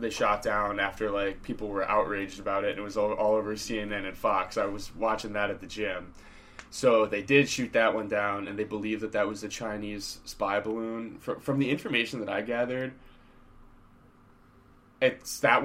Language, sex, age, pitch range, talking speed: English, male, 20-39, 105-130 Hz, 195 wpm